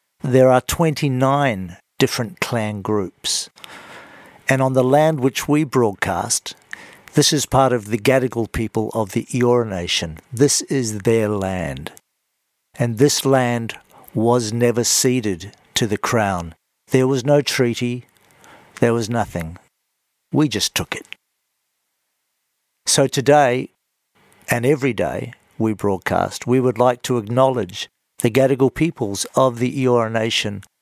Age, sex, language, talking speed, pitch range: 50-69, male, English, 130 wpm, 115-140 Hz